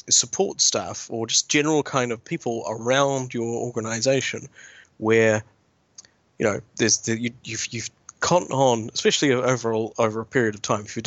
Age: 30-49